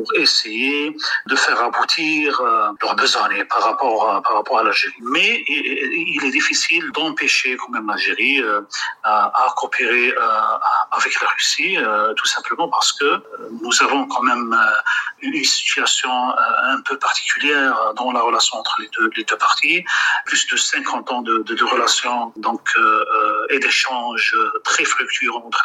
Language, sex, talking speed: French, male, 155 wpm